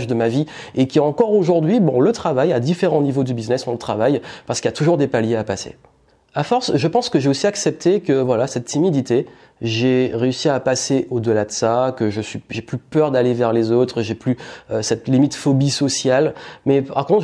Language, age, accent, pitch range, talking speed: French, 30-49, French, 125-150 Hz, 235 wpm